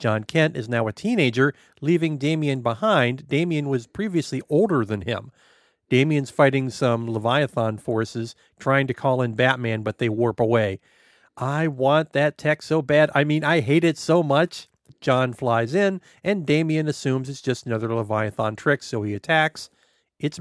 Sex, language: male, English